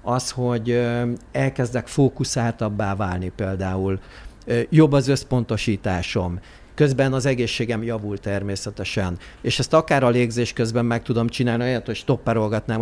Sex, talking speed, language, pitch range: male, 120 wpm, Hungarian, 105-125 Hz